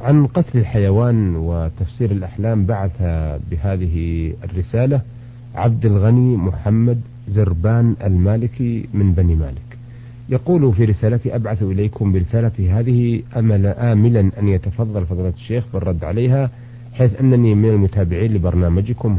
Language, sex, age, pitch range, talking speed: Arabic, male, 40-59, 100-120 Hz, 115 wpm